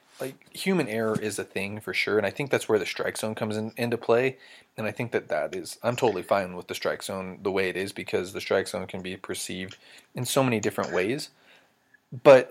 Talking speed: 235 wpm